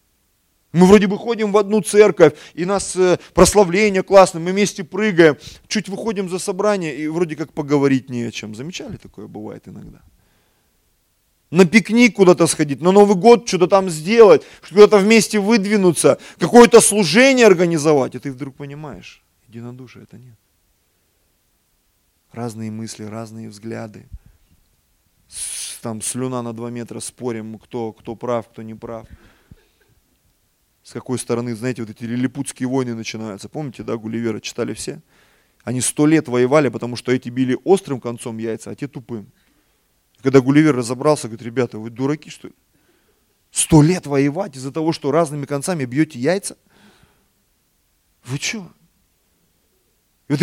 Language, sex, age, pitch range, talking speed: Russian, male, 20-39, 115-190 Hz, 140 wpm